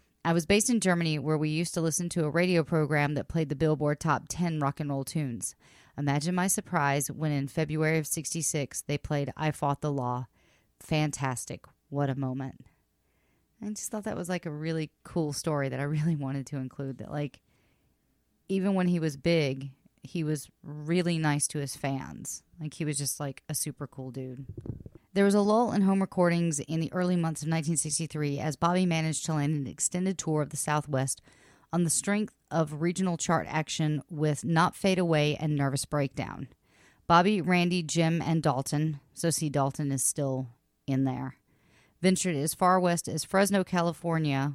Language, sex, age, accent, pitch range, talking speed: English, female, 30-49, American, 145-170 Hz, 185 wpm